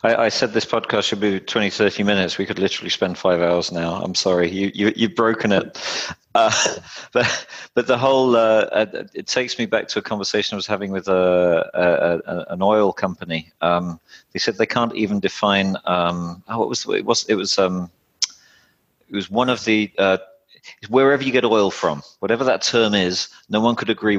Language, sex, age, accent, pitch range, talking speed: English, male, 40-59, British, 90-110 Hz, 205 wpm